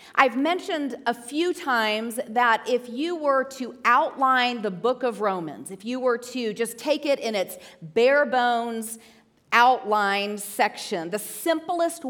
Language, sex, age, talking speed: English, female, 40-59, 150 wpm